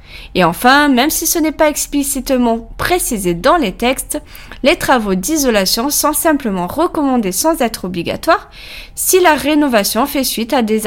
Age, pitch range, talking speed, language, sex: 20-39, 210-290 Hz, 155 wpm, French, female